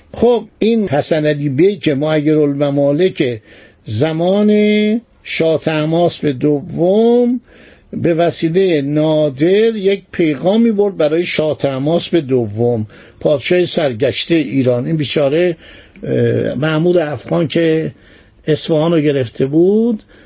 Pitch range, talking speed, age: 145-185 Hz, 95 wpm, 60-79